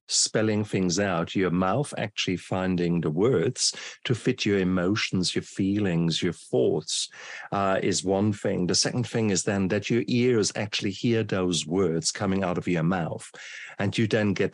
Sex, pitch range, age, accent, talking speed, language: male, 95-125 Hz, 50-69, German, 175 wpm, English